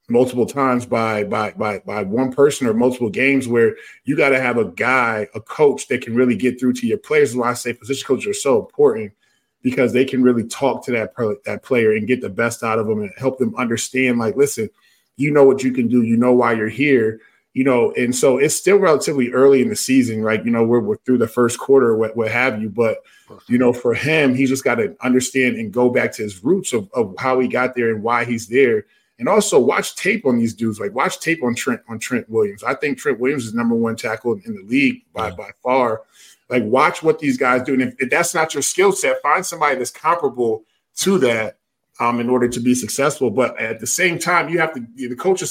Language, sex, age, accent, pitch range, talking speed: English, male, 20-39, American, 120-140 Hz, 245 wpm